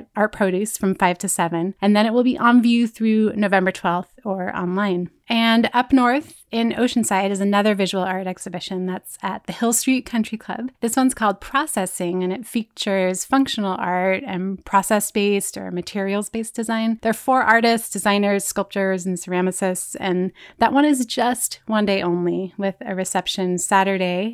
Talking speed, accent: 170 wpm, American